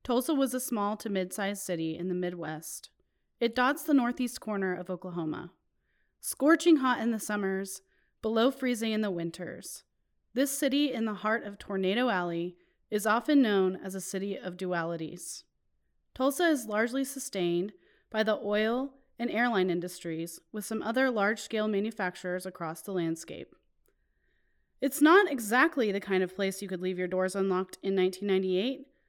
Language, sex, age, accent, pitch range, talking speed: English, female, 30-49, American, 185-250 Hz, 155 wpm